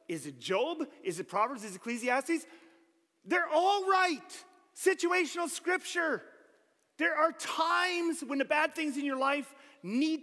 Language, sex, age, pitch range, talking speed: English, male, 30-49, 195-280 Hz, 145 wpm